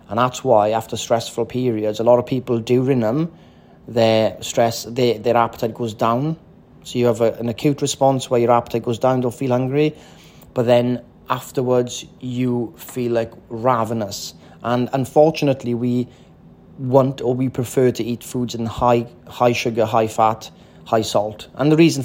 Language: English